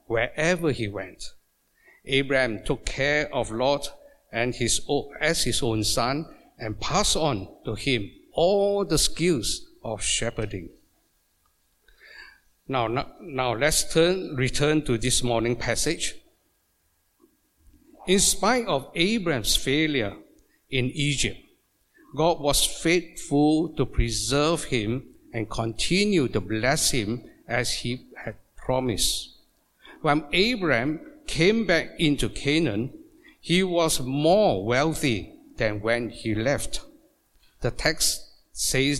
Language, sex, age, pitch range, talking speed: English, male, 60-79, 120-165 Hz, 110 wpm